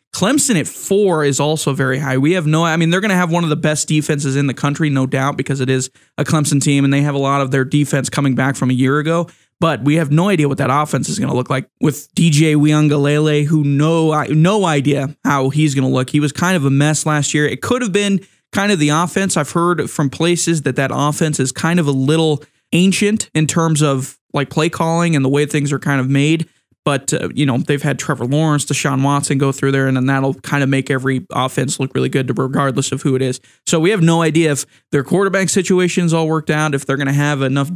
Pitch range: 135-165 Hz